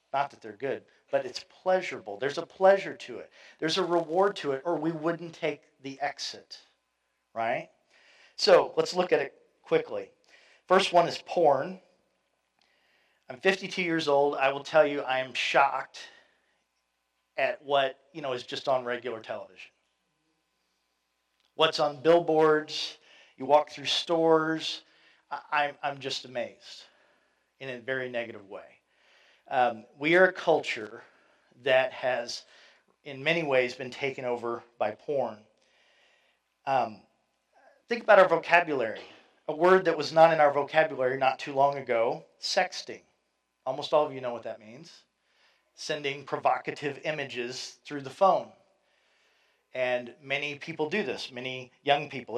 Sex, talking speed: male, 145 wpm